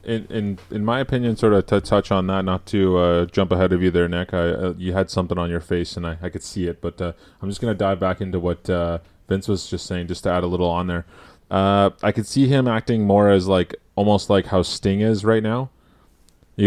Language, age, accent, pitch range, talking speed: English, 20-39, American, 90-105 Hz, 265 wpm